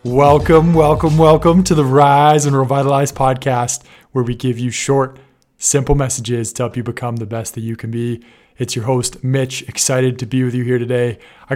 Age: 20-39